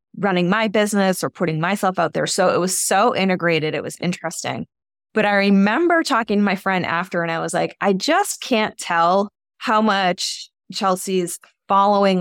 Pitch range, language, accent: 170-205 Hz, English, American